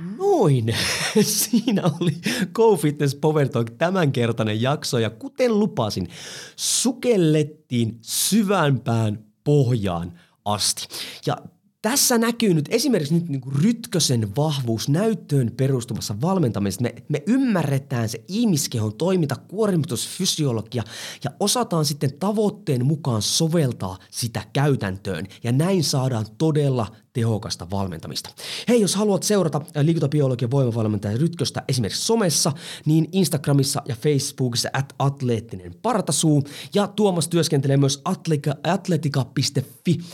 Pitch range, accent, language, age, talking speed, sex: 115-165 Hz, native, Finnish, 30-49, 105 wpm, male